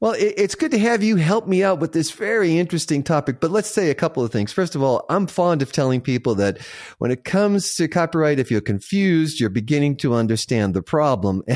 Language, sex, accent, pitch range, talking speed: English, male, American, 110-155 Hz, 230 wpm